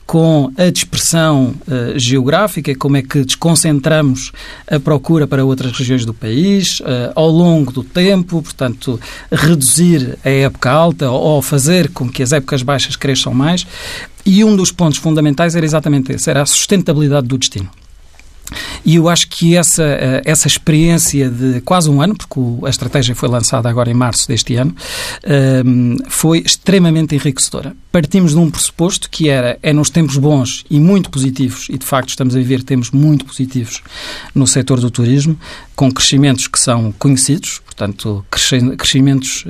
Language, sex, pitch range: Portuguese, male, 130-165 Hz